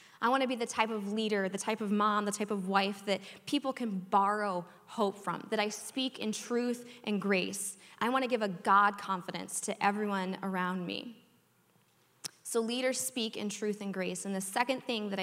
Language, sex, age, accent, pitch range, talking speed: English, female, 20-39, American, 195-240 Hz, 205 wpm